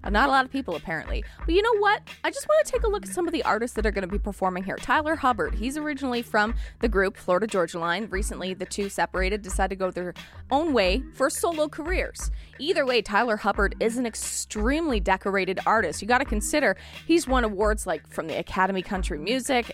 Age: 20-39